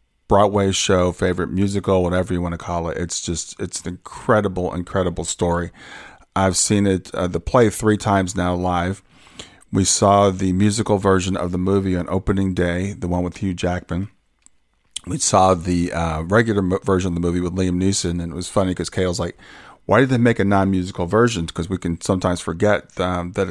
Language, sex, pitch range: English, male, 90-100 Hz